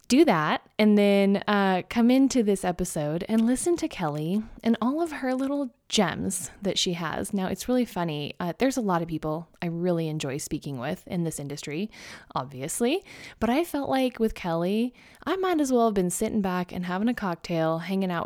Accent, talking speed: American, 200 wpm